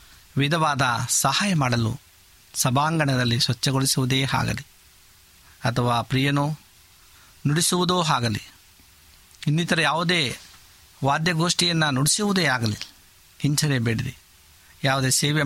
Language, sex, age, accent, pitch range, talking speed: Kannada, male, 50-69, native, 105-150 Hz, 70 wpm